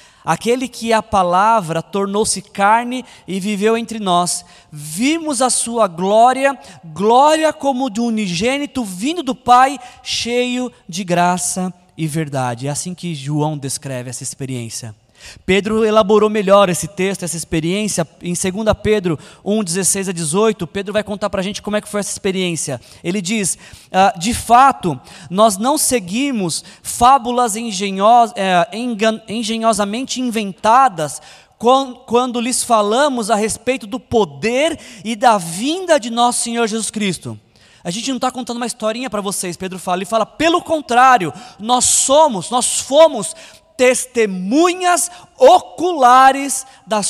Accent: Brazilian